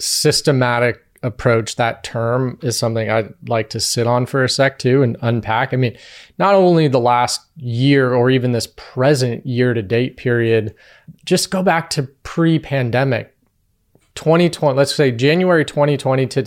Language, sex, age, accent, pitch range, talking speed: English, male, 30-49, American, 115-145 Hz, 155 wpm